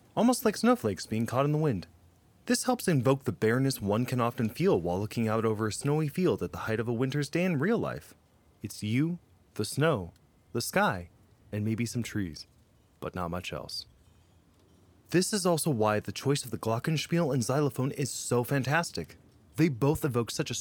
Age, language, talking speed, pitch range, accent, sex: 20-39, English, 195 wpm, 105-145 Hz, American, male